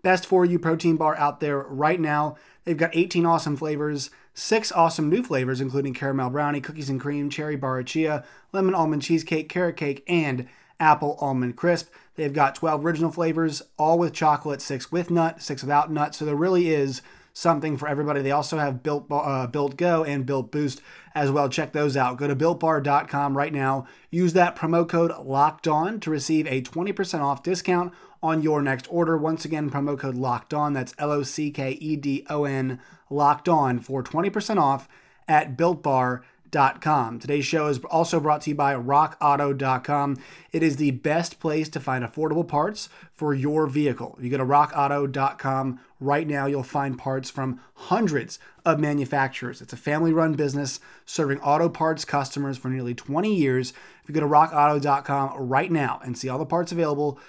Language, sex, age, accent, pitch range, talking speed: English, male, 30-49, American, 135-160 Hz, 175 wpm